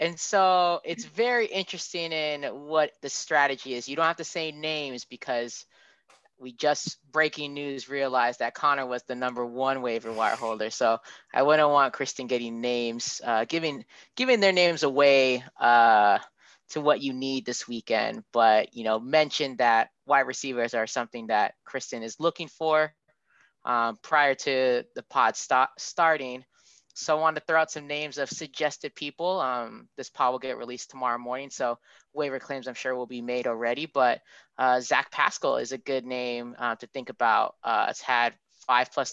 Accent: American